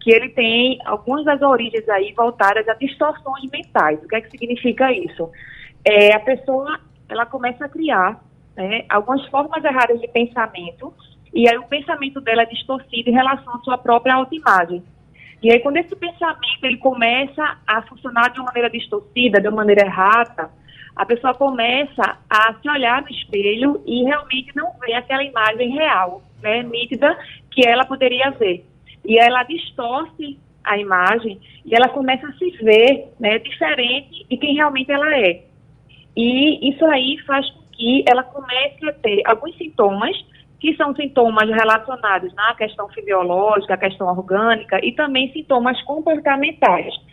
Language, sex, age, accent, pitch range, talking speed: Portuguese, female, 20-39, Brazilian, 215-275 Hz, 160 wpm